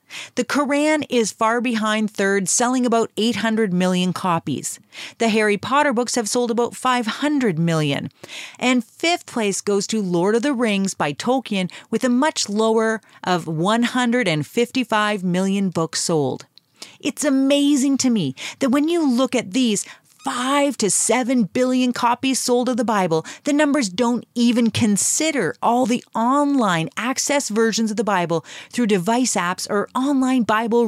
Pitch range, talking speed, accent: 205-260 Hz, 150 wpm, American